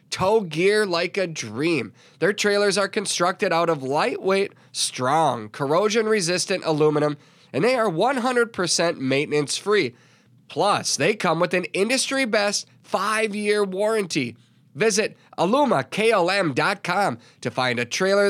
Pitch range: 140-200 Hz